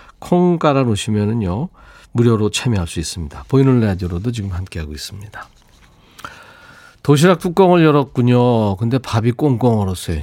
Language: Korean